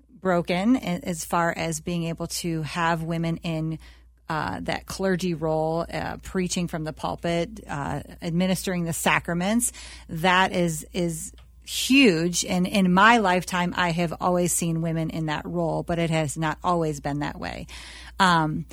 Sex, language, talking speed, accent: female, English, 155 wpm, American